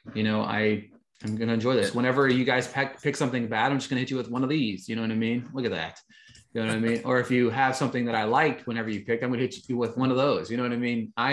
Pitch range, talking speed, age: 110-135 Hz, 325 wpm, 20-39